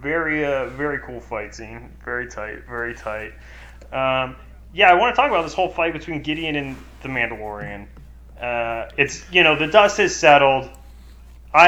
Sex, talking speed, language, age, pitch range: male, 175 wpm, English, 20-39, 115-145 Hz